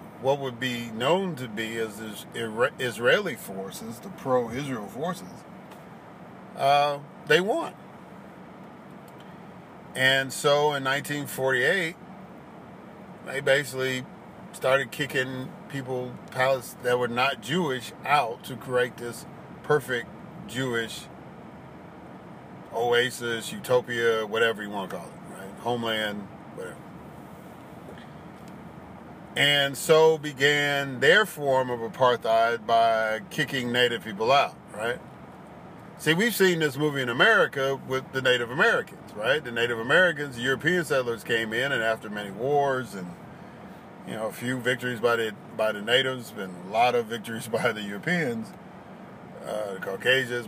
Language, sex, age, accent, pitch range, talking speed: English, male, 50-69, American, 115-140 Hz, 125 wpm